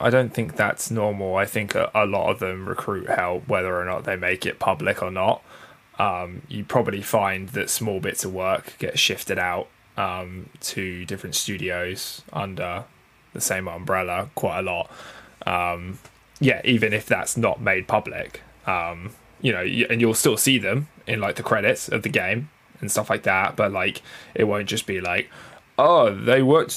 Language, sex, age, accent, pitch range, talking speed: English, male, 10-29, British, 95-115 Hz, 190 wpm